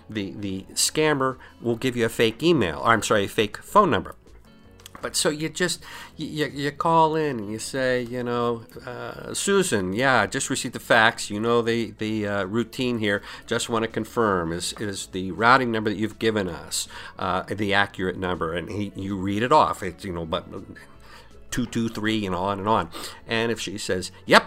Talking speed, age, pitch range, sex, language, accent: 200 wpm, 50-69, 90-120 Hz, male, English, American